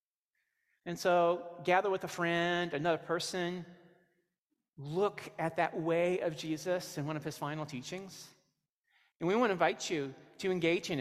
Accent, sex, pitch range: American, male, 150-195 Hz